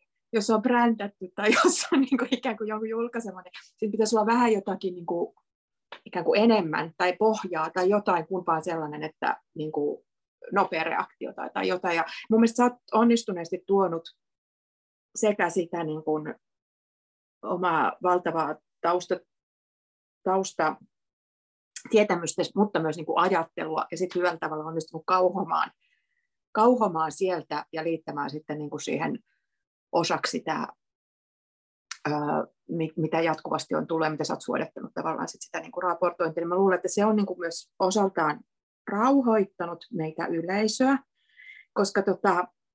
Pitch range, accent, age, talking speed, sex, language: 170-220 Hz, native, 30-49, 120 wpm, female, Finnish